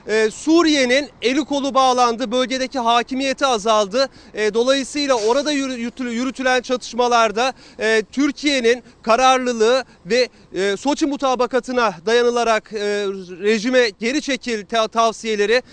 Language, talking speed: Turkish, 80 wpm